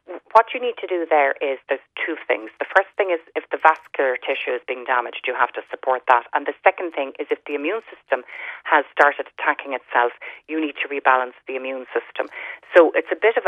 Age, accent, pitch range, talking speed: 30-49, Irish, 135-185 Hz, 225 wpm